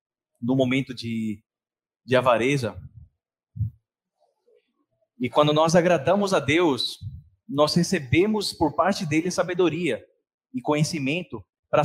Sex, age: male, 20-39